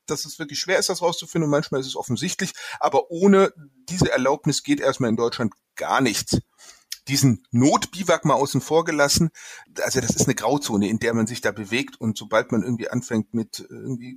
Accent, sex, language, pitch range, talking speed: German, male, German, 125-165 Hz, 195 wpm